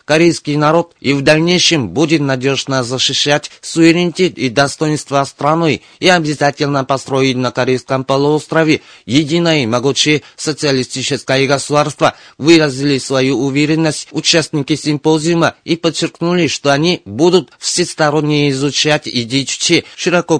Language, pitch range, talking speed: Russian, 135-160 Hz, 110 wpm